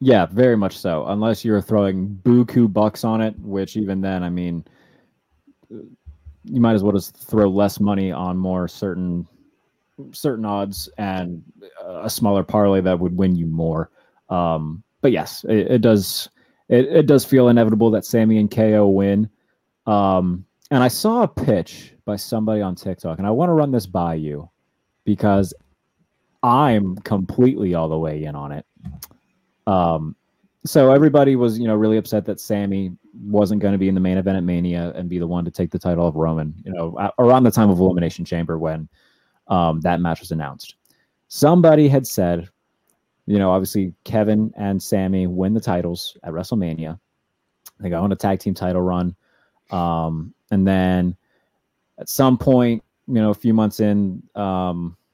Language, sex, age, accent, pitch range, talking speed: English, male, 30-49, American, 90-110 Hz, 175 wpm